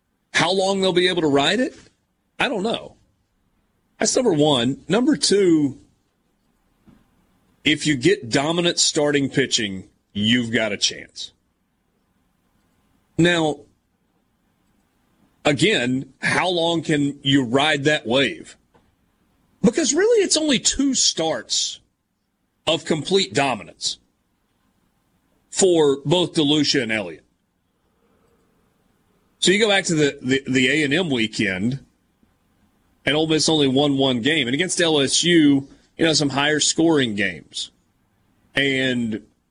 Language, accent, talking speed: English, American, 115 wpm